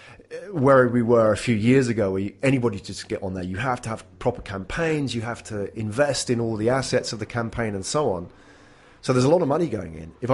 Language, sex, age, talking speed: English, male, 30-49, 245 wpm